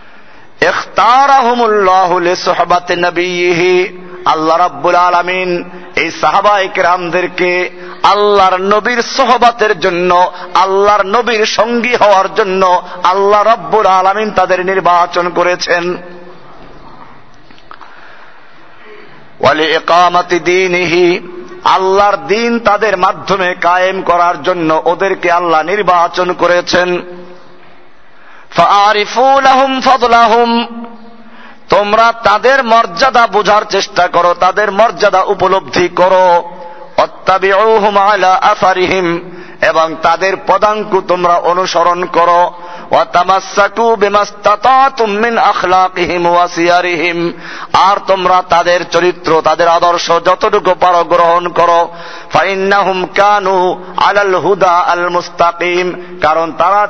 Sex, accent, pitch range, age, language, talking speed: male, native, 175-205 Hz, 50-69, Bengali, 60 wpm